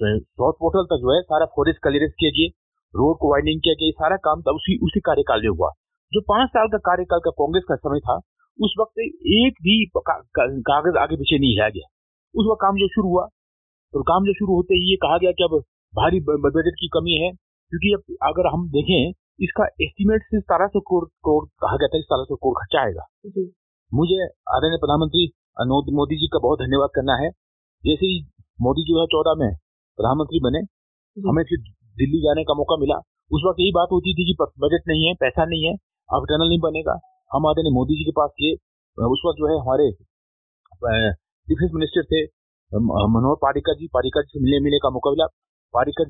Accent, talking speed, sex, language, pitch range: native, 175 wpm, male, Hindi, 140-185 Hz